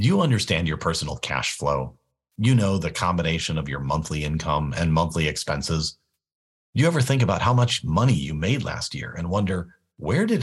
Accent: American